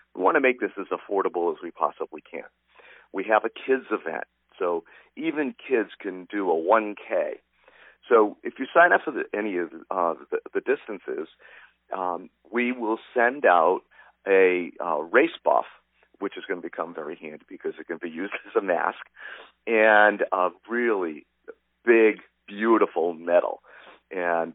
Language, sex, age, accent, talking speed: English, male, 50-69, American, 160 wpm